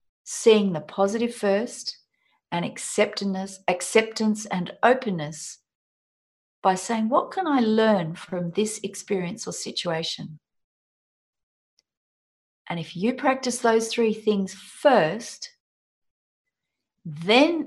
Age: 40-59